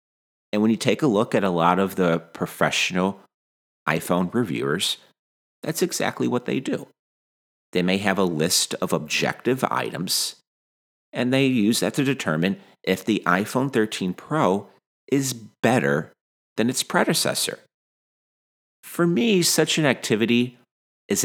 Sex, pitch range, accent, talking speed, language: male, 85-140 Hz, American, 140 wpm, English